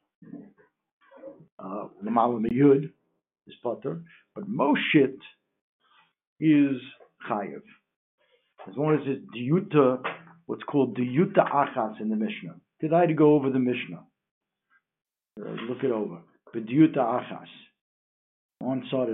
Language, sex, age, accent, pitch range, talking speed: English, male, 60-79, American, 125-170 Hz, 105 wpm